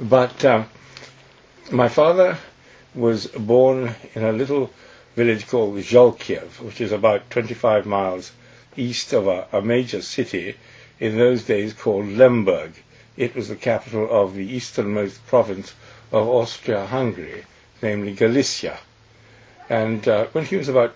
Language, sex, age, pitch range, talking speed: English, male, 60-79, 105-125 Hz, 130 wpm